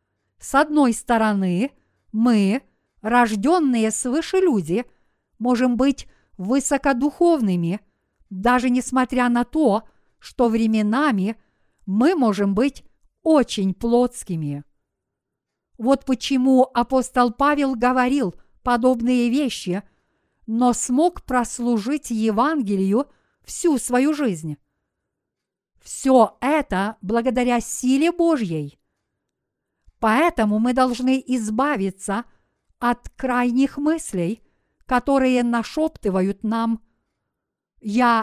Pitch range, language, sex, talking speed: 220-270 Hz, Russian, female, 80 wpm